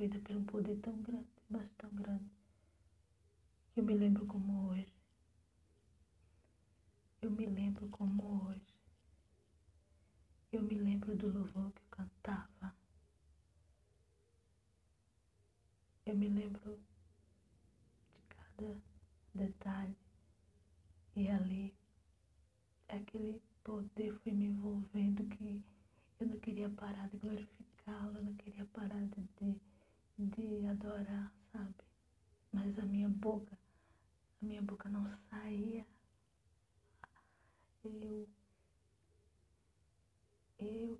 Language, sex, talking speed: Portuguese, female, 100 wpm